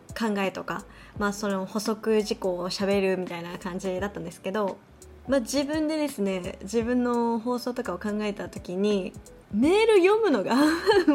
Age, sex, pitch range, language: 20-39, female, 200-300 Hz, Japanese